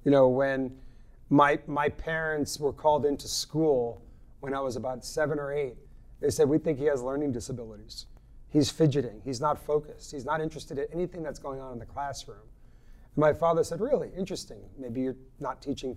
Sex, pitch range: male, 130-165 Hz